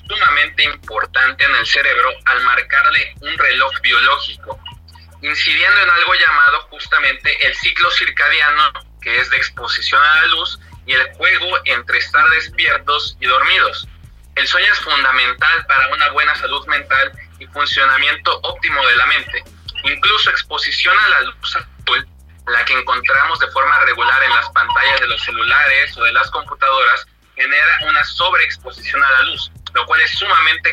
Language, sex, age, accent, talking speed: Spanish, male, 30-49, Mexican, 155 wpm